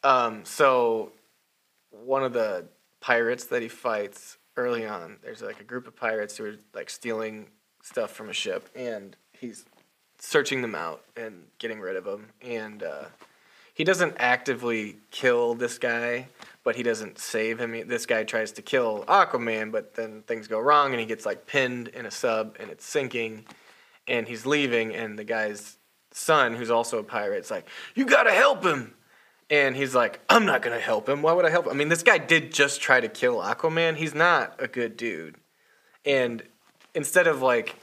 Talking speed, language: 190 wpm, English